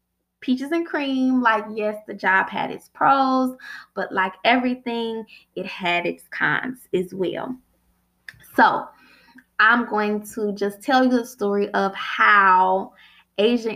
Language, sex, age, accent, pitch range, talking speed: English, female, 20-39, American, 195-250 Hz, 135 wpm